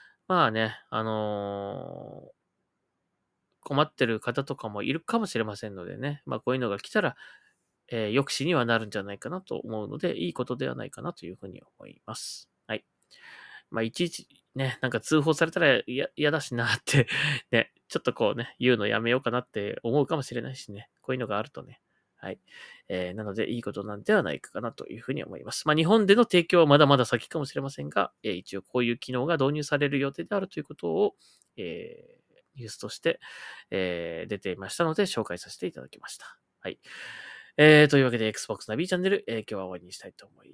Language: Japanese